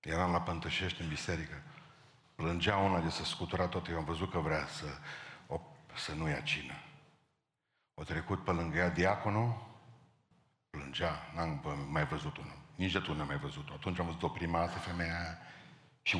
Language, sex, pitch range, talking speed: Romanian, male, 85-115 Hz, 170 wpm